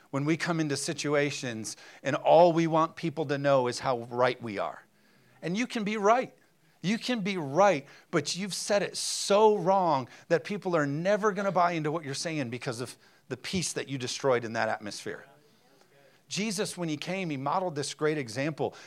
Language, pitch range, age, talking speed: English, 135-185 Hz, 40-59, 195 wpm